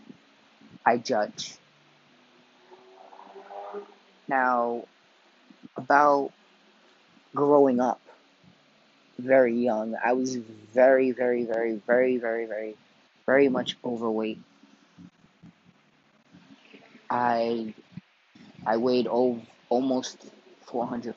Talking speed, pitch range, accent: 75 wpm, 115-135 Hz, American